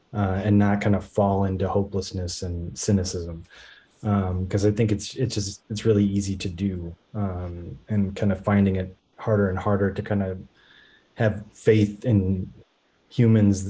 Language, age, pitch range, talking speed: English, 20-39, 95-110 Hz, 170 wpm